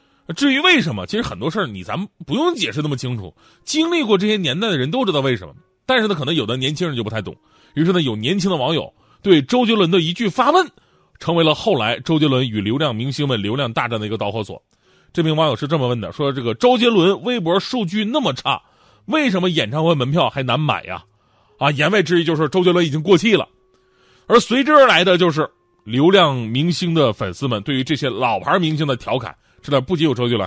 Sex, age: male, 30-49